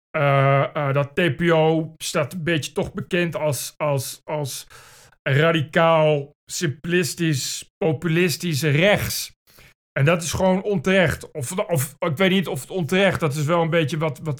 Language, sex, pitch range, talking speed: Dutch, male, 145-170 Hz, 155 wpm